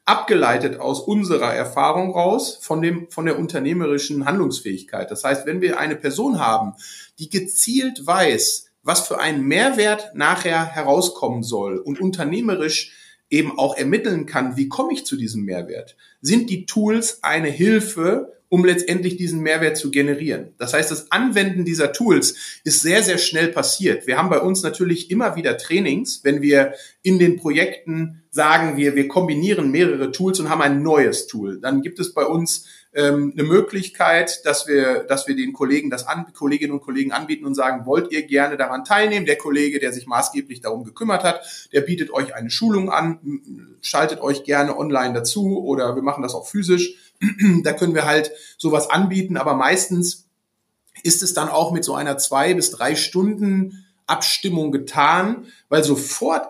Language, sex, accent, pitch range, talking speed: German, male, German, 145-195 Hz, 170 wpm